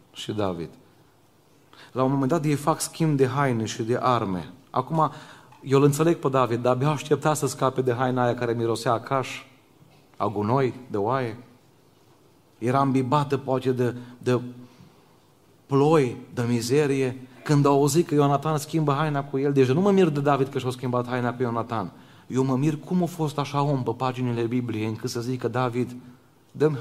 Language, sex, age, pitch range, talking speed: Romanian, male, 30-49, 120-140 Hz, 180 wpm